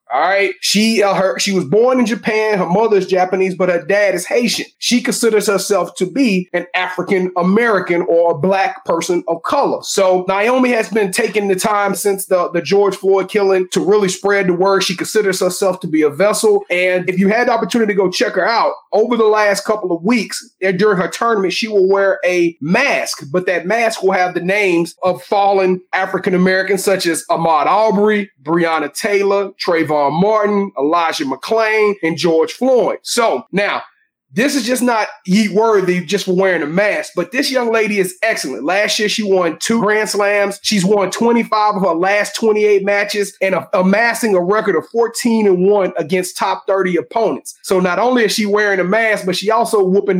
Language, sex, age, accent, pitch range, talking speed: English, male, 30-49, American, 185-220 Hz, 195 wpm